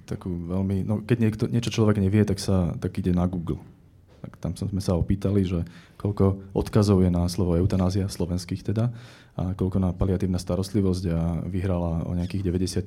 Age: 20-39